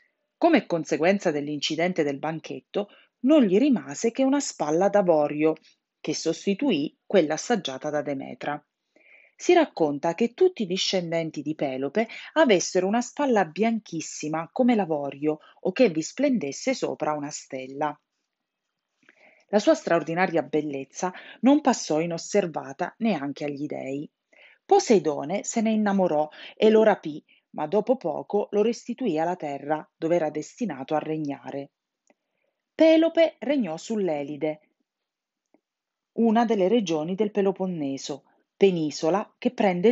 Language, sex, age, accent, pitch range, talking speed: Italian, female, 40-59, native, 150-235 Hz, 120 wpm